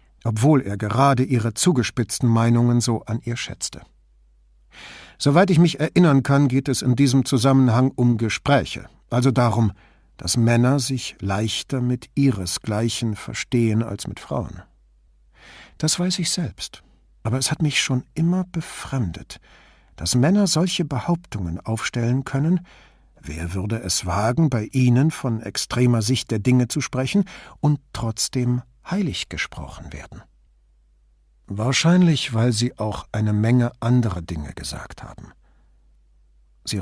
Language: English